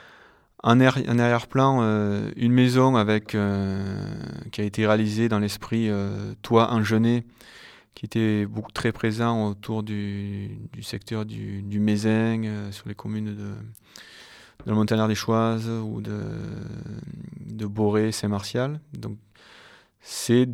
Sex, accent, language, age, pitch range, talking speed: male, French, French, 20-39, 100-115 Hz, 135 wpm